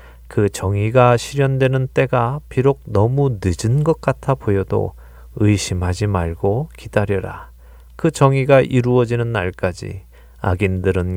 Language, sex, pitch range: Korean, male, 90-125 Hz